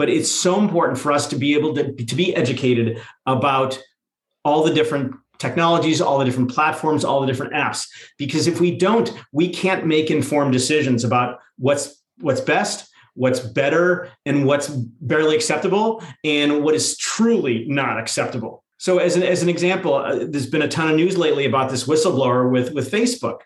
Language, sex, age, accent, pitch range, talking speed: English, male, 40-59, American, 130-170 Hz, 180 wpm